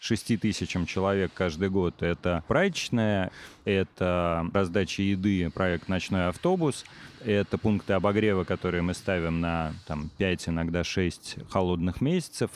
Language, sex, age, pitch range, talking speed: Russian, male, 30-49, 90-110 Hz, 130 wpm